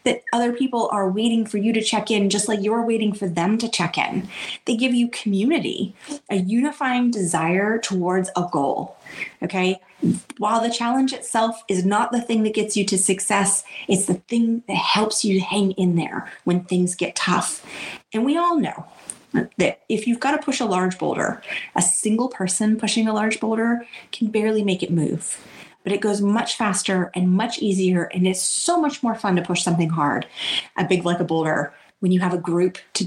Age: 30-49